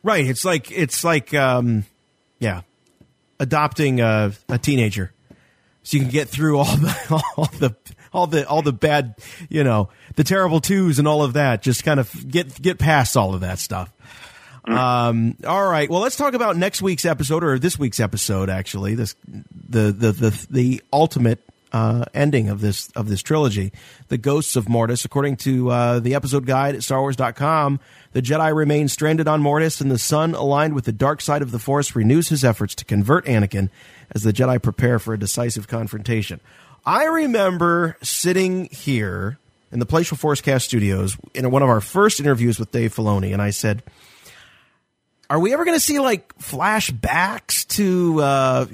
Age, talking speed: 40-59, 180 wpm